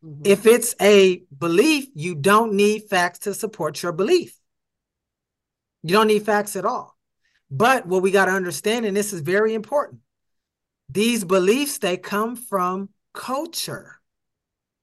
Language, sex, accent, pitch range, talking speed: English, male, American, 185-220 Hz, 140 wpm